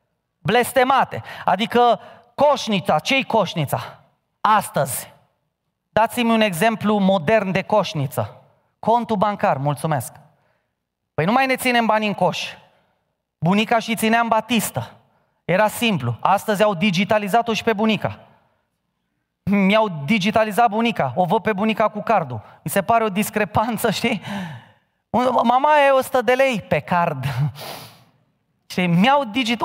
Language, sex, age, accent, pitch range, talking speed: Romanian, male, 30-49, native, 190-255 Hz, 120 wpm